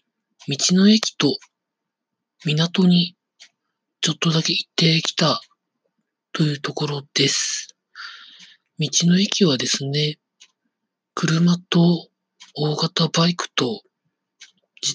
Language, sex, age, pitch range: Japanese, male, 40-59, 145-195 Hz